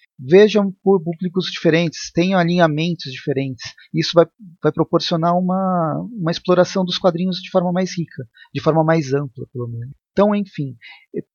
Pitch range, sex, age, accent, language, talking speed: 150-185 Hz, male, 40-59, Brazilian, Portuguese, 155 wpm